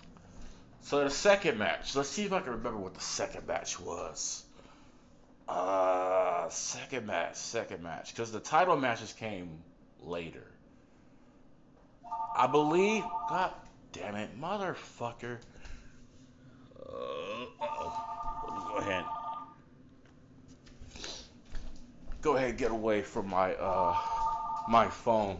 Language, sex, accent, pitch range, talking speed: English, male, American, 90-135 Hz, 110 wpm